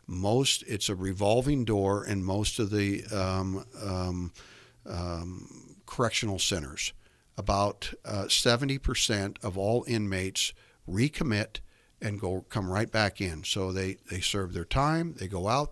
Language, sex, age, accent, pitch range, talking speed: English, male, 60-79, American, 95-120 Hz, 135 wpm